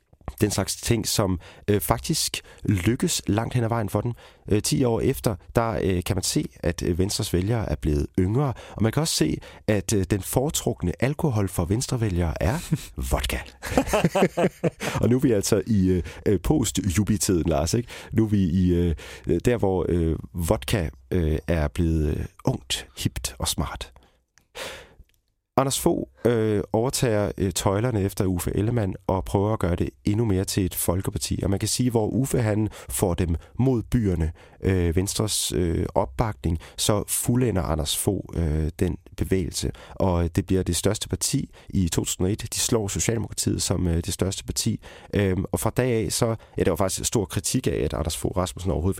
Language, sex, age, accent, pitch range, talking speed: Danish, male, 40-59, native, 85-115 Hz, 175 wpm